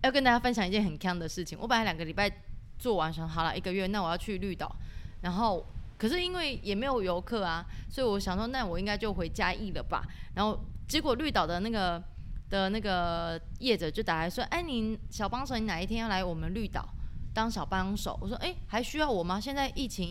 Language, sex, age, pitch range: Chinese, female, 20-39, 175-225 Hz